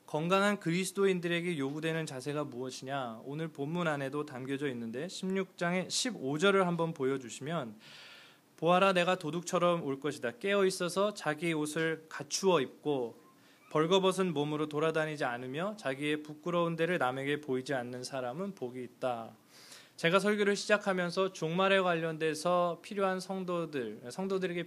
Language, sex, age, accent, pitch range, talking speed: English, male, 20-39, Korean, 135-180 Hz, 110 wpm